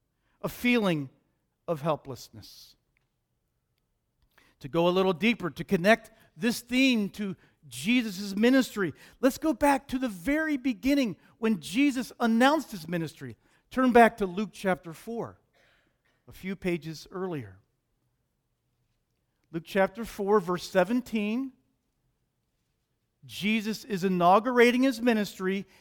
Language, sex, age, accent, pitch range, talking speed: English, male, 50-69, American, 155-240 Hz, 110 wpm